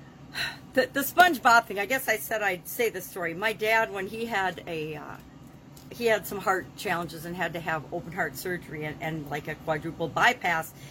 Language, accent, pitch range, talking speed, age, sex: English, American, 155-225 Hz, 185 wpm, 50-69, female